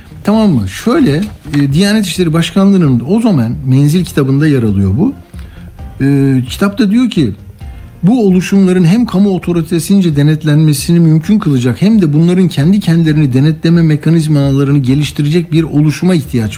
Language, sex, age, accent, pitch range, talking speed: Turkish, male, 60-79, native, 130-180 Hz, 130 wpm